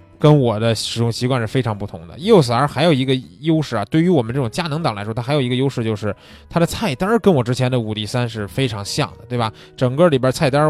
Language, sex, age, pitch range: Chinese, male, 20-39, 115-160 Hz